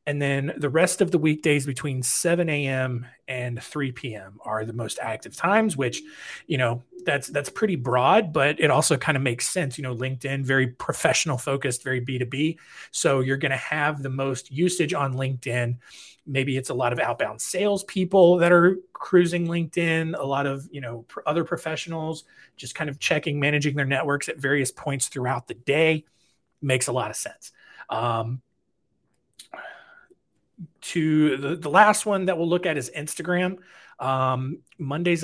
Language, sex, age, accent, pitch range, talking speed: English, male, 30-49, American, 130-170 Hz, 170 wpm